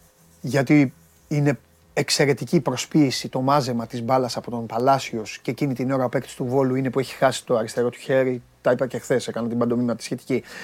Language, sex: Greek, male